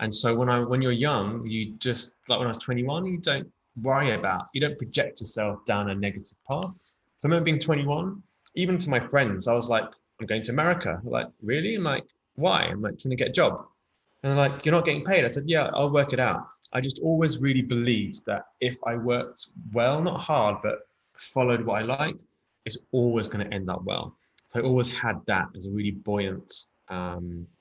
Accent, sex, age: British, male, 20-39